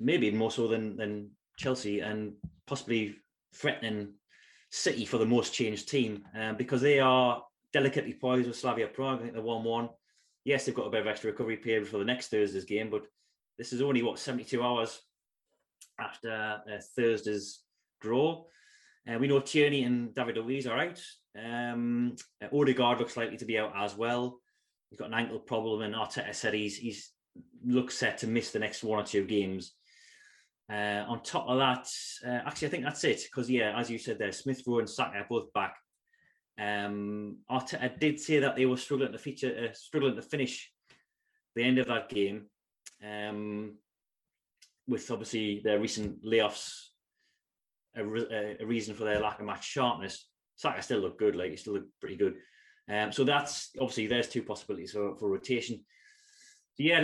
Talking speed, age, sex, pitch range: 180 wpm, 20-39, male, 105-130 Hz